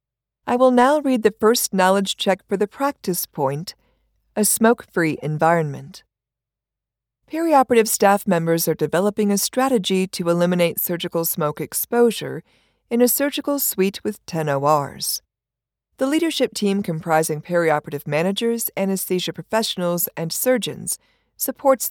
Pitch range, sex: 160-230 Hz, female